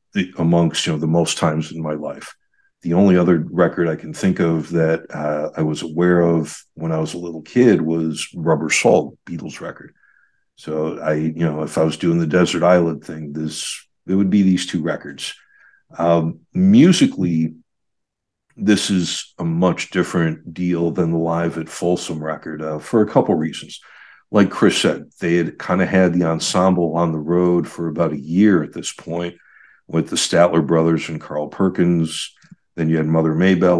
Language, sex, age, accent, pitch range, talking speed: English, male, 60-79, American, 80-90 Hz, 185 wpm